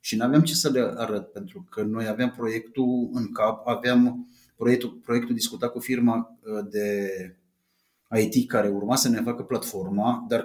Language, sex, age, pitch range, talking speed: Romanian, male, 30-49, 120-170 Hz, 165 wpm